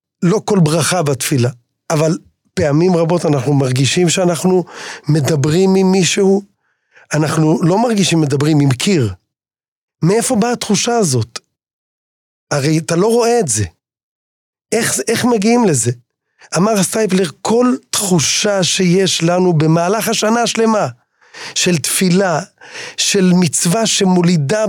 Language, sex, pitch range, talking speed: Hebrew, male, 155-205 Hz, 115 wpm